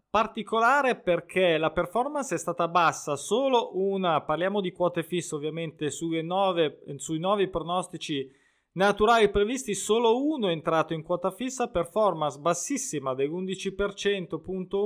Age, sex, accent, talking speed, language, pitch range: 20-39, male, native, 130 wpm, Italian, 155-195 Hz